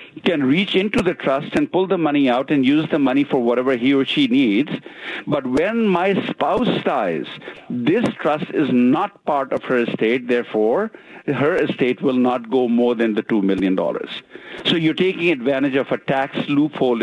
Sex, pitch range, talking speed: male, 135-220 Hz, 185 wpm